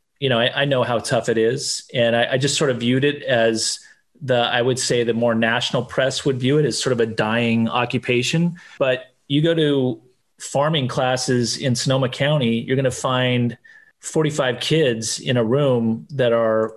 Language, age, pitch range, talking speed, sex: English, 30-49, 115-140 Hz, 195 wpm, male